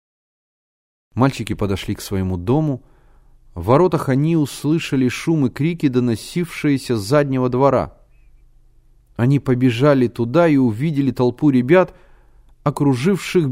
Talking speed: 105 wpm